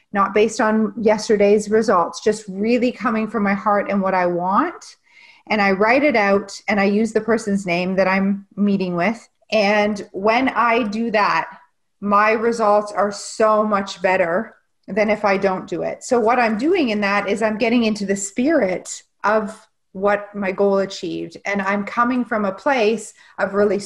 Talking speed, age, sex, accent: 180 wpm, 30-49, female, American